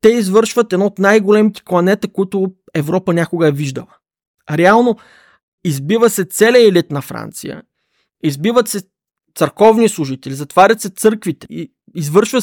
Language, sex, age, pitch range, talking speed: Bulgarian, male, 20-39, 155-210 Hz, 135 wpm